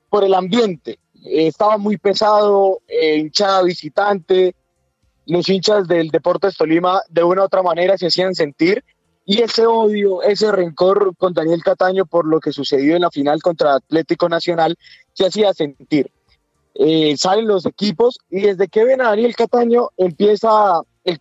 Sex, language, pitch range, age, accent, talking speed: male, Spanish, 165-210 Hz, 20-39, Colombian, 160 wpm